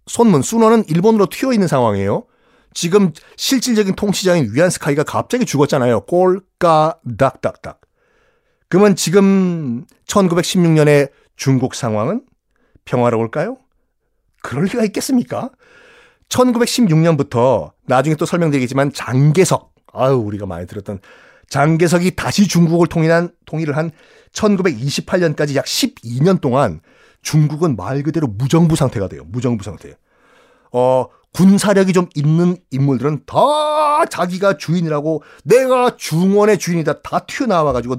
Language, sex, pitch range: Korean, male, 135-190 Hz